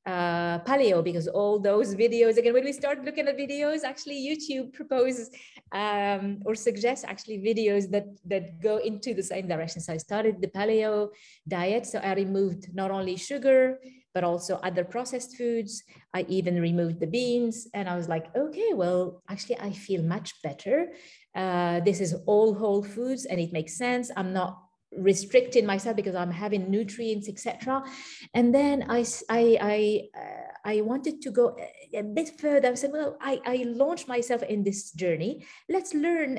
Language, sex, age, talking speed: English, female, 30-49, 175 wpm